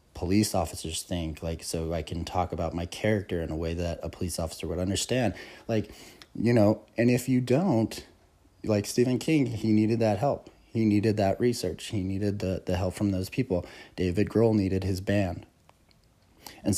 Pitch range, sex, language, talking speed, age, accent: 90-105 Hz, male, English, 185 wpm, 30-49, American